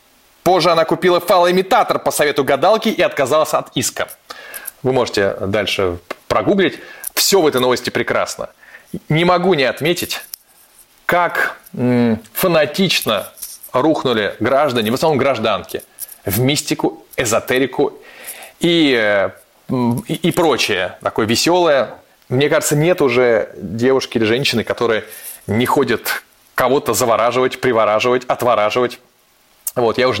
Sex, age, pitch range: male, 30-49, 110-175 Hz